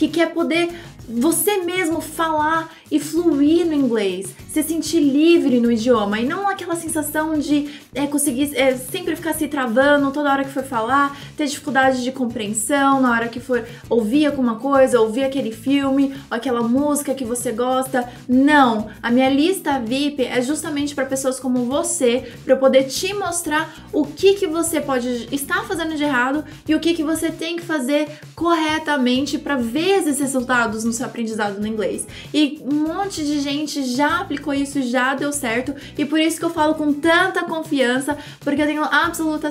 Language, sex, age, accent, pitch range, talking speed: Portuguese, female, 20-39, Brazilian, 250-310 Hz, 175 wpm